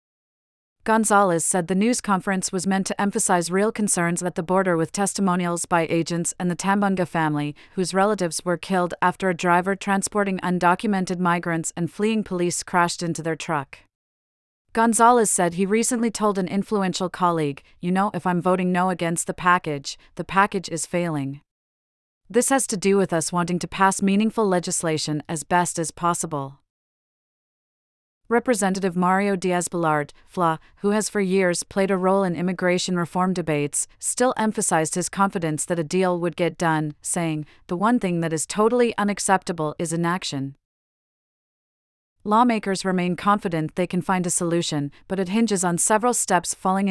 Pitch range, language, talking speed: 170-195 Hz, English, 160 wpm